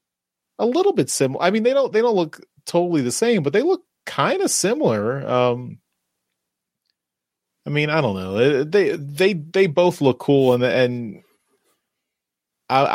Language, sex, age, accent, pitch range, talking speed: English, male, 30-49, American, 100-150 Hz, 160 wpm